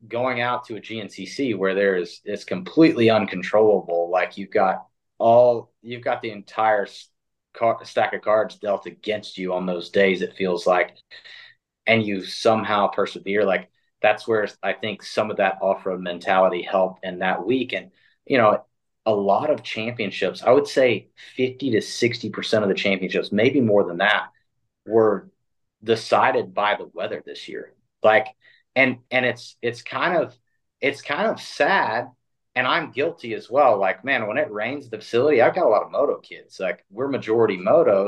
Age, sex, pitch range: 30-49, male, 100-125 Hz